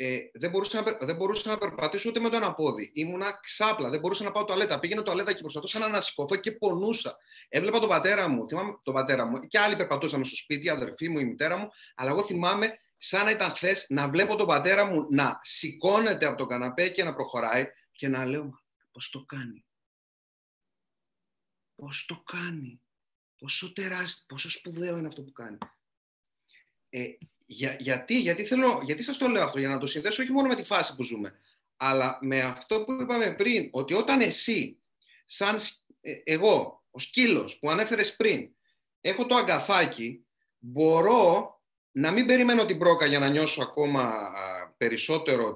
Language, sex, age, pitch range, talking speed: Greek, male, 30-49, 140-210 Hz, 180 wpm